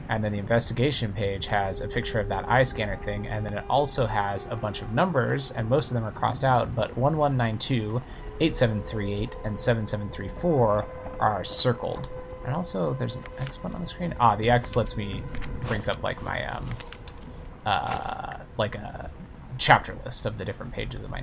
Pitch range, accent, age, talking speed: 105-130 Hz, American, 20-39, 185 wpm